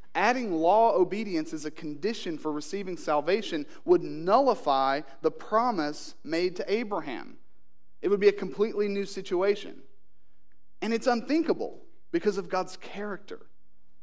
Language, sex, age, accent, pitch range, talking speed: English, male, 40-59, American, 150-220 Hz, 130 wpm